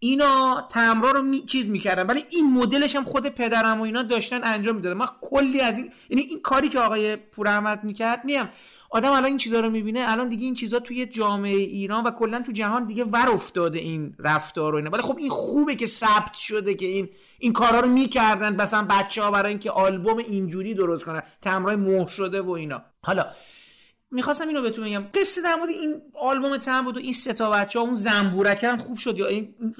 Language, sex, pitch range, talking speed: Persian, male, 195-250 Hz, 210 wpm